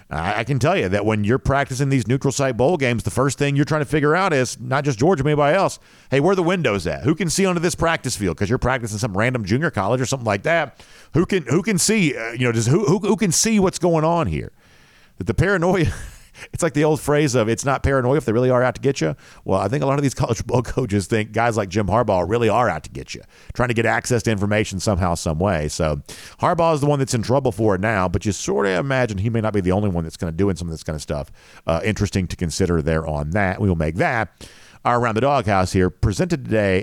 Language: English